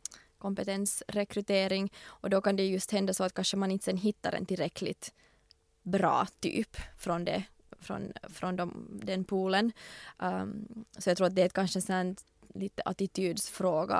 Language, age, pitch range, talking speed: English, 20-39, 185-200 Hz, 155 wpm